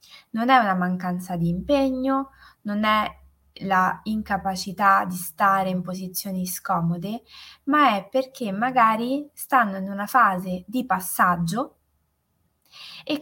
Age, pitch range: 20-39, 180-235 Hz